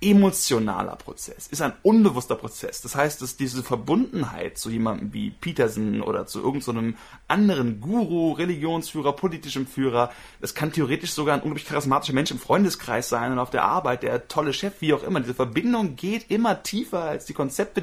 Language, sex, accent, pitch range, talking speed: German, male, German, 130-185 Hz, 180 wpm